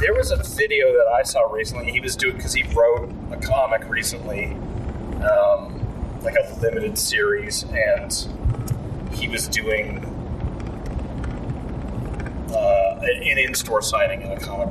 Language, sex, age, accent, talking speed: English, male, 30-49, American, 135 wpm